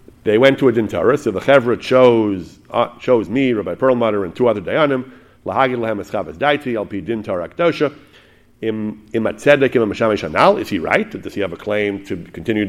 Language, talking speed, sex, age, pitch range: English, 175 wpm, male, 50-69, 105-130 Hz